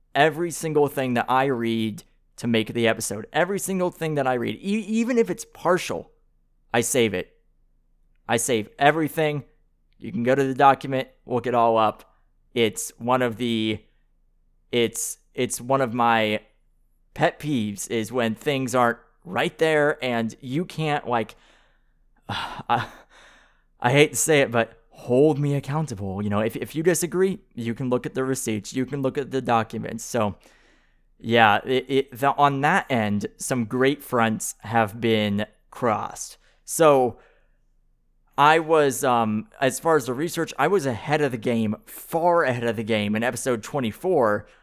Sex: male